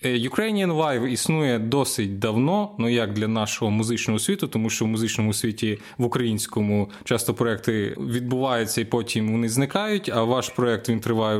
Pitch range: 110-135 Hz